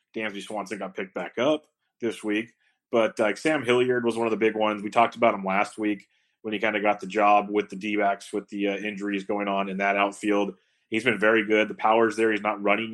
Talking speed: 245 wpm